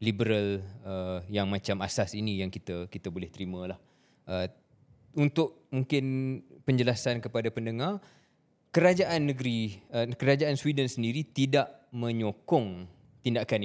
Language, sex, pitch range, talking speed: Malay, male, 105-125 Hz, 115 wpm